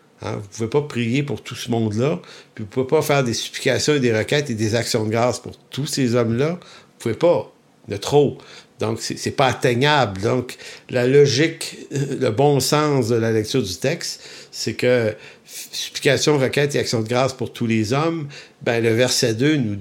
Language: English